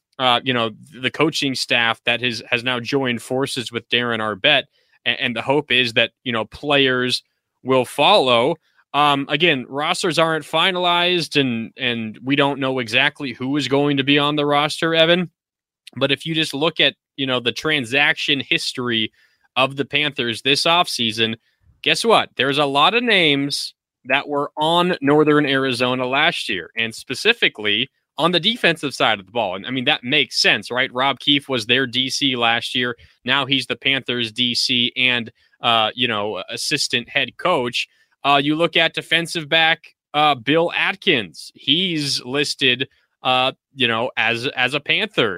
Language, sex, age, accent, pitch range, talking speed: English, male, 20-39, American, 125-150 Hz, 170 wpm